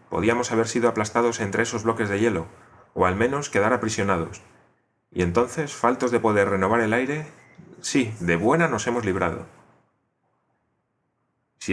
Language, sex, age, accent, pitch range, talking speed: Spanish, male, 30-49, Spanish, 90-120 Hz, 150 wpm